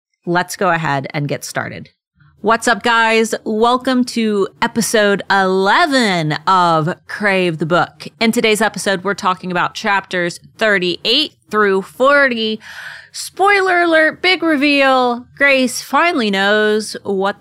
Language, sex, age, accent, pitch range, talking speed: English, female, 30-49, American, 155-230 Hz, 120 wpm